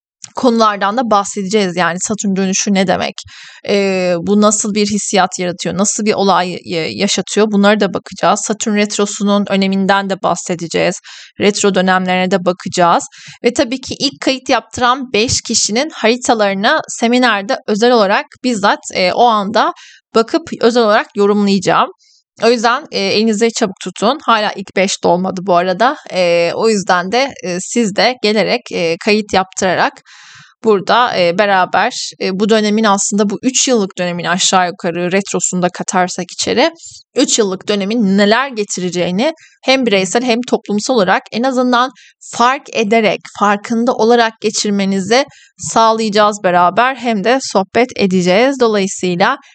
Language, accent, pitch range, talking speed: Turkish, native, 190-235 Hz, 135 wpm